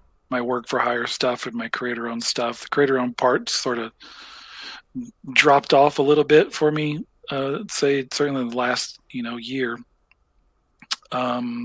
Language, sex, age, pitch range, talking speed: English, male, 40-59, 125-140 Hz, 175 wpm